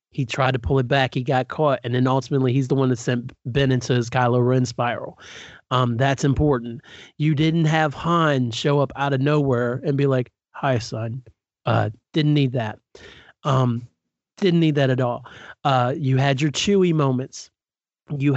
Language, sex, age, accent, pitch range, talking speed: English, male, 30-49, American, 125-140 Hz, 185 wpm